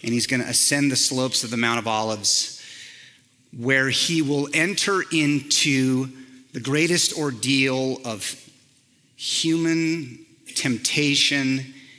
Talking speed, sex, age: 115 wpm, male, 30-49